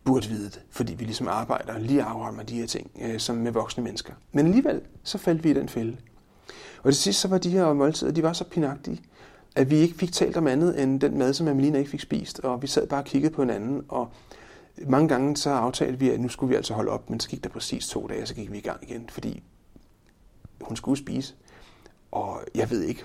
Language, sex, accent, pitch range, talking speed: Danish, male, native, 120-145 Hz, 245 wpm